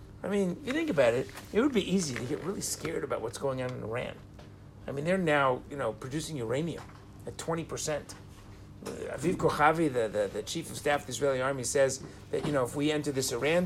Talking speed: 230 wpm